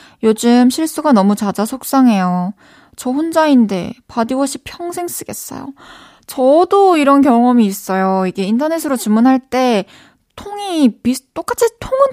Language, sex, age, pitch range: Korean, female, 20-39, 180-260 Hz